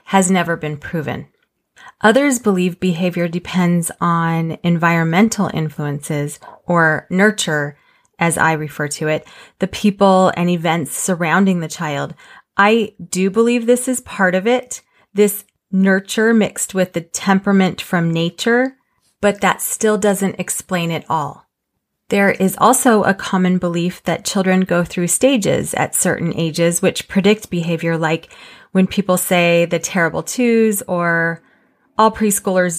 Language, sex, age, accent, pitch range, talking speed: English, female, 30-49, American, 170-210 Hz, 135 wpm